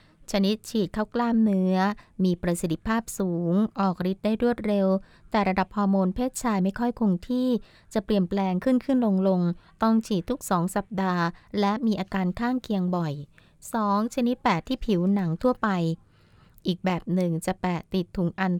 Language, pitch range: Thai, 175-215 Hz